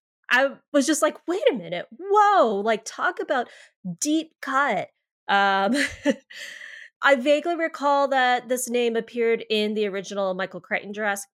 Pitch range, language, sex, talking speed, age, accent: 185-255 Hz, English, female, 145 wpm, 20-39, American